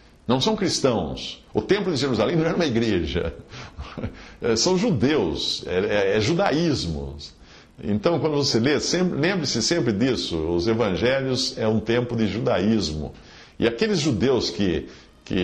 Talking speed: 130 wpm